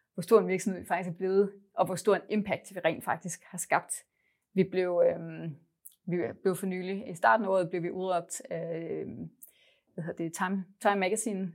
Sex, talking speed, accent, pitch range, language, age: female, 185 wpm, native, 175-205 Hz, Danish, 30-49